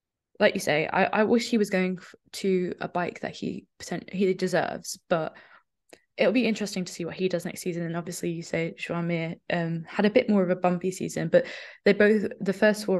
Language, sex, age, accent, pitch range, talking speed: English, female, 10-29, British, 165-190 Hz, 215 wpm